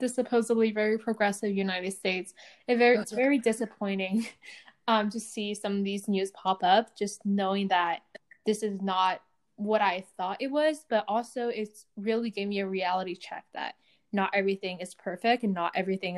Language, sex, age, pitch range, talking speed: English, female, 10-29, 195-220 Hz, 170 wpm